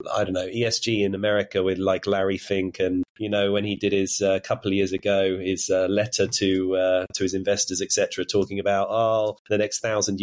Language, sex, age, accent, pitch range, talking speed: English, male, 30-49, British, 100-120 Hz, 225 wpm